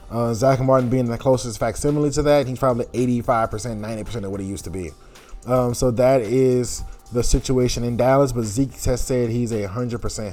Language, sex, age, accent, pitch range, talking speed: English, male, 20-39, American, 120-140 Hz, 215 wpm